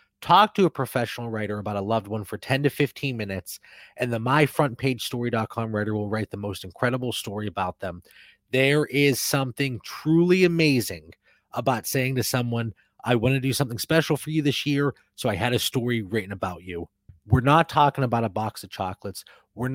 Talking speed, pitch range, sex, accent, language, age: 190 wpm, 105-145 Hz, male, American, English, 30-49